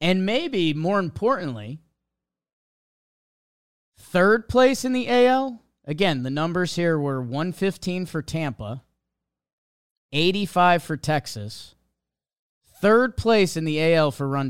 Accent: American